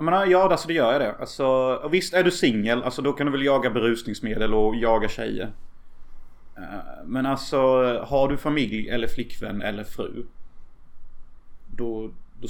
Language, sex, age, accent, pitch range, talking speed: Swedish, male, 30-49, native, 110-135 Hz, 165 wpm